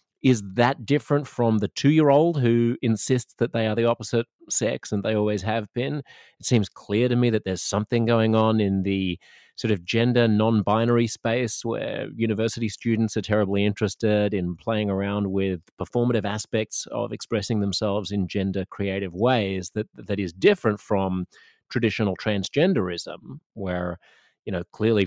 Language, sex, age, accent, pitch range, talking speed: English, male, 30-49, Australian, 95-115 Hz, 160 wpm